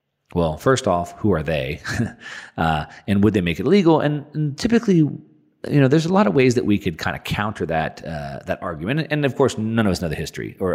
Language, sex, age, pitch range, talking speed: English, male, 40-59, 85-115 Hz, 240 wpm